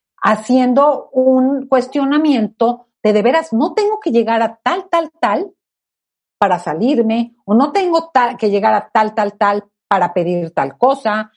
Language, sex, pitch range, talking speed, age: Spanish, female, 210-270 Hz, 155 wpm, 50-69